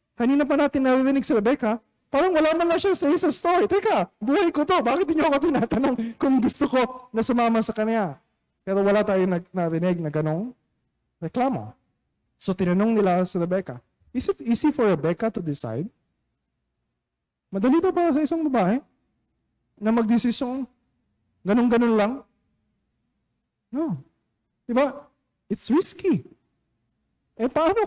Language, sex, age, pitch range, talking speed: Filipino, male, 20-39, 220-290 Hz, 140 wpm